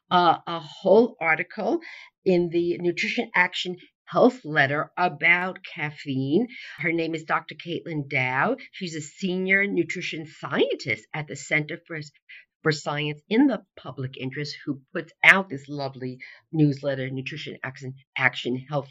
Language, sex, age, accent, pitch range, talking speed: English, female, 50-69, American, 145-190 Hz, 130 wpm